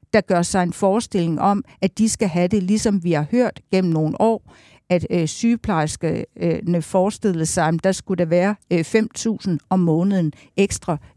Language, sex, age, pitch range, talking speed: Danish, female, 60-79, 170-205 Hz, 165 wpm